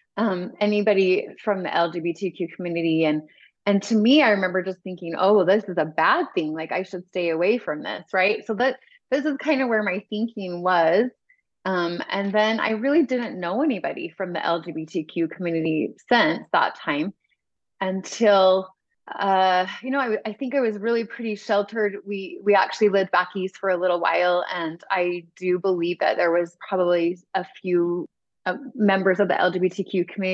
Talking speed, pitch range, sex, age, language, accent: 180 wpm, 175-215 Hz, female, 30-49, English, American